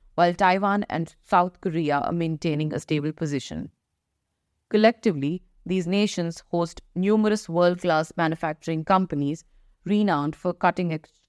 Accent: Indian